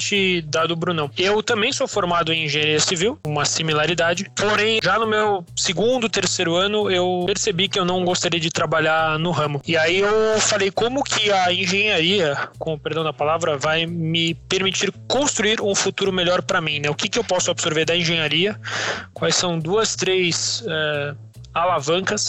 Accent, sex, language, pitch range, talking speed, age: Brazilian, male, Portuguese, 155-185 Hz, 175 wpm, 20-39